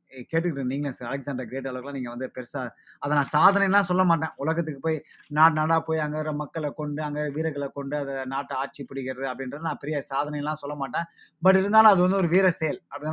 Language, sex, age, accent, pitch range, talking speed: Tamil, male, 20-39, native, 135-165 Hz, 195 wpm